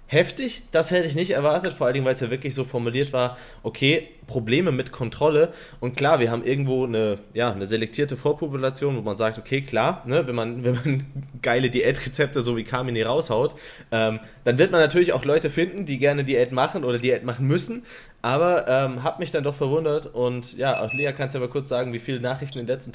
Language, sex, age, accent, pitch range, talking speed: German, male, 20-39, German, 120-155 Hz, 220 wpm